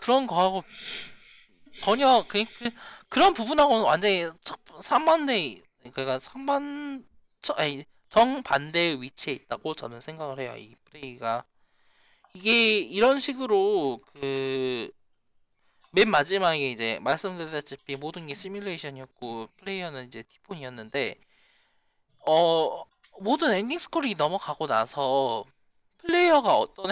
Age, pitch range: 20-39, 135-220 Hz